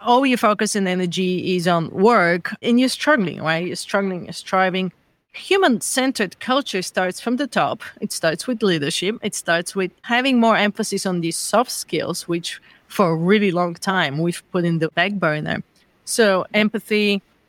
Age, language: 30-49, English